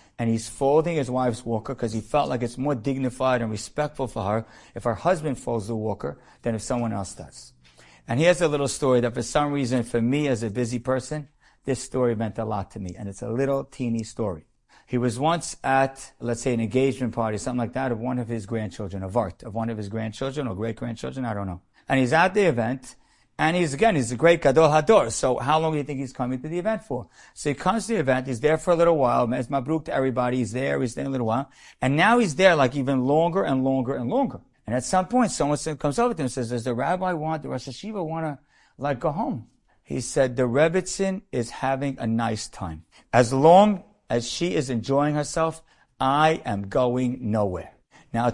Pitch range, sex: 115-150 Hz, male